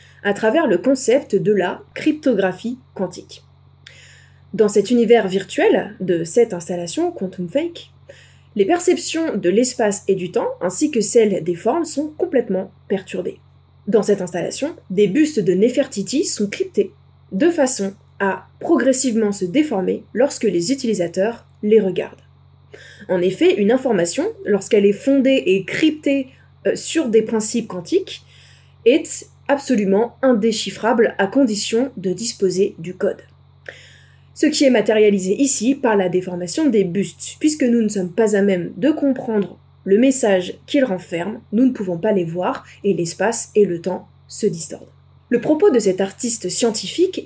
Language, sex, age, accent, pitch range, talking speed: French, female, 20-39, French, 195-270 Hz, 145 wpm